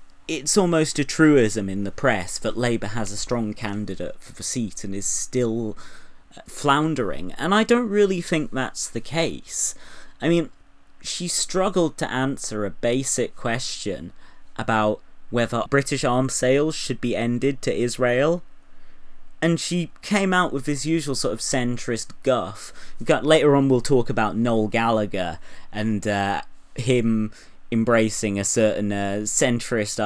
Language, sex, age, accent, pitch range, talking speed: English, male, 30-49, British, 105-140 Hz, 150 wpm